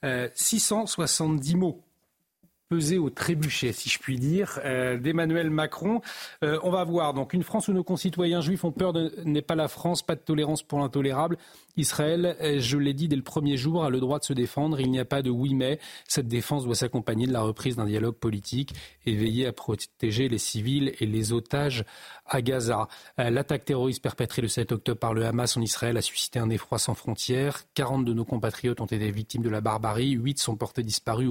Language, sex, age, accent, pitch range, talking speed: French, male, 40-59, French, 120-160 Hz, 205 wpm